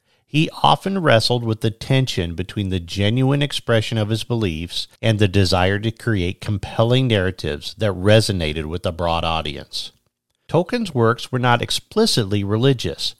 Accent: American